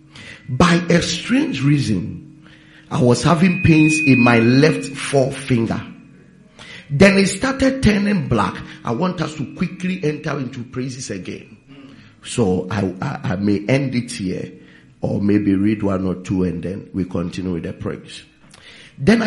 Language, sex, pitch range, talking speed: English, male, 120-180 Hz, 150 wpm